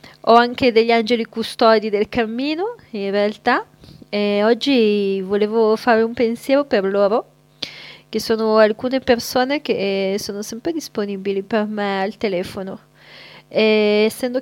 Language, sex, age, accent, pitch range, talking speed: Italian, female, 30-49, native, 200-230 Hz, 125 wpm